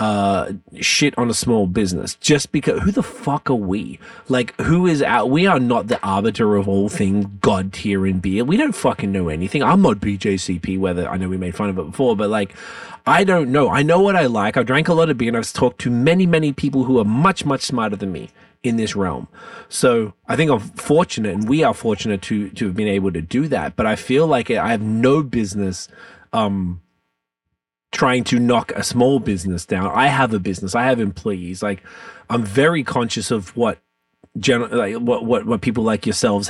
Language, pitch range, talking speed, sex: English, 95-130 Hz, 220 wpm, male